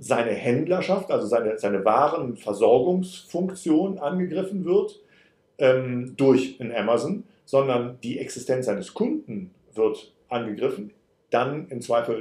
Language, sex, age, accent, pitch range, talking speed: German, male, 50-69, German, 110-180 Hz, 110 wpm